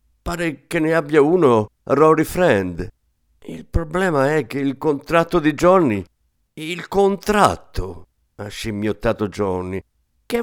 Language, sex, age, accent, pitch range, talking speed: Italian, male, 50-69, native, 95-150 Hz, 120 wpm